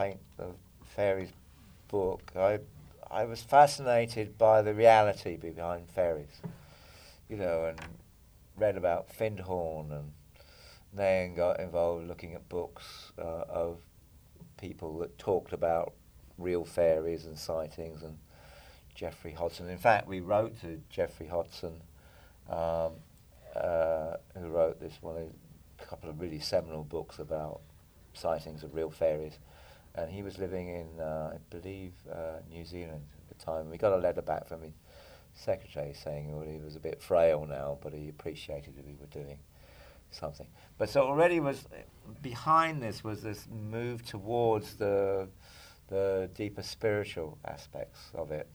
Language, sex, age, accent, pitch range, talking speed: English, male, 50-69, British, 80-105 Hz, 145 wpm